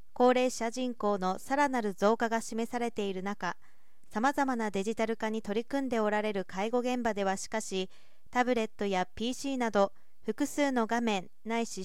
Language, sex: Japanese, female